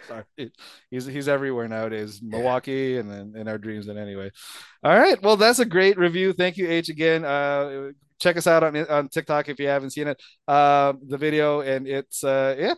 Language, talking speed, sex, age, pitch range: English, 200 wpm, male, 20-39, 145-180 Hz